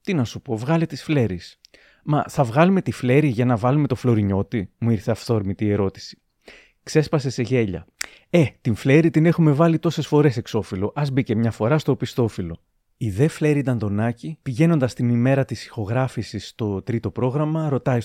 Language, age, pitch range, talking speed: Greek, 30-49, 110-150 Hz, 180 wpm